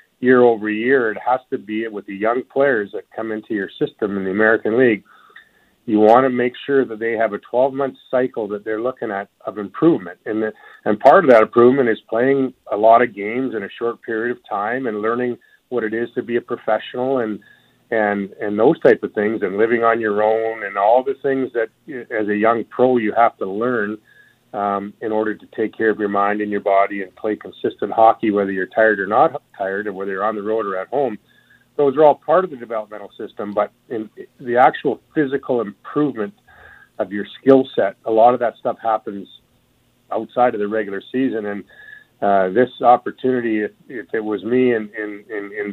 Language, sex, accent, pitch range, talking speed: English, male, American, 105-125 Hz, 215 wpm